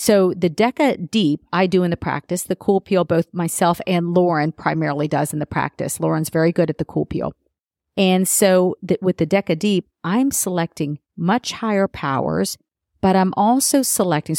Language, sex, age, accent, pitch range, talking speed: English, female, 40-59, American, 160-195 Hz, 185 wpm